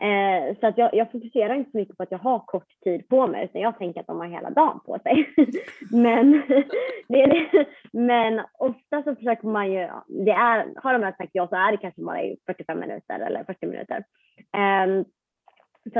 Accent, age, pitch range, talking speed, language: native, 20-39, 185-230 Hz, 195 wpm, Swedish